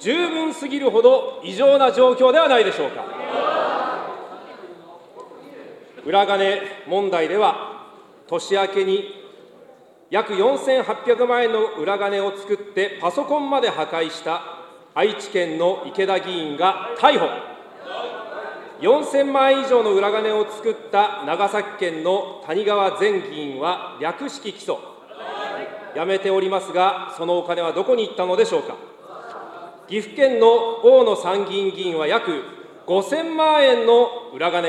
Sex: male